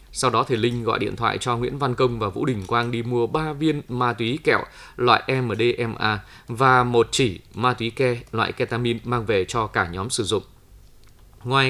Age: 20-39